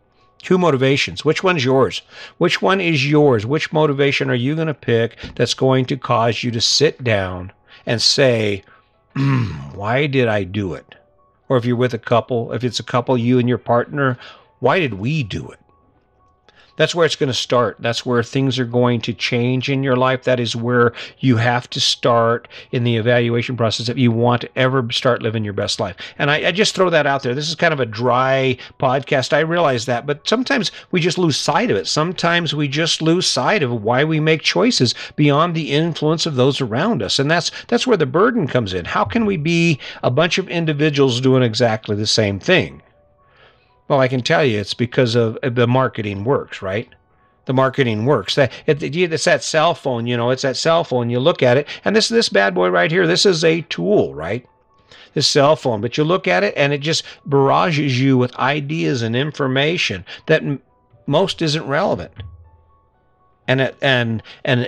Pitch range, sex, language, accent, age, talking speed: 120-155 Hz, male, English, American, 50-69, 205 wpm